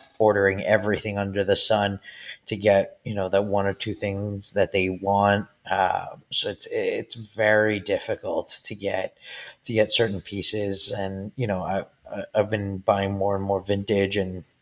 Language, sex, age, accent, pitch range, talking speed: English, male, 20-39, American, 100-110 Hz, 170 wpm